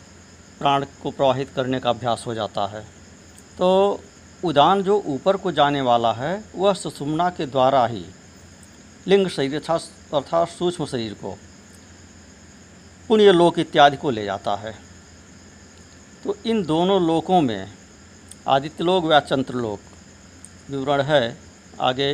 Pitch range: 100-170 Hz